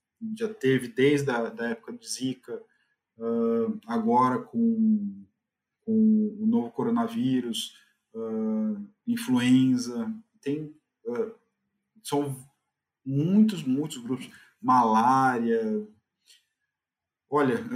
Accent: Brazilian